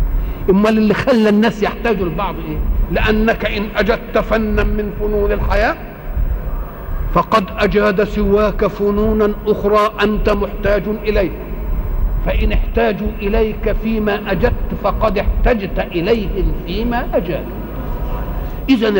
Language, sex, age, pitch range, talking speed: Arabic, male, 50-69, 200-240 Hz, 100 wpm